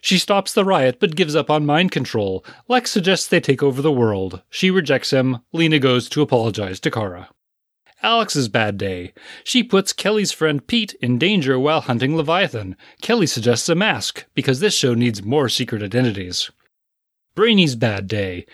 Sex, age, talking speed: male, 30-49, 170 wpm